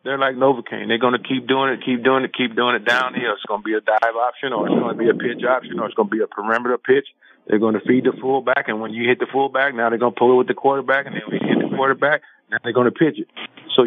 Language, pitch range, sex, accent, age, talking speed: English, 120-140 Hz, male, American, 50-69, 325 wpm